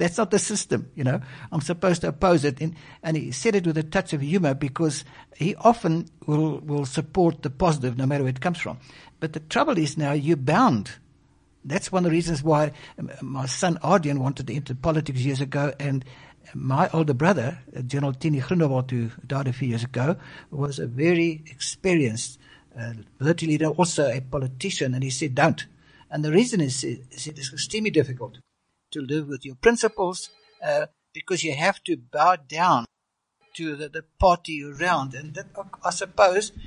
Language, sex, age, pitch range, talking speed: English, male, 60-79, 140-175 Hz, 185 wpm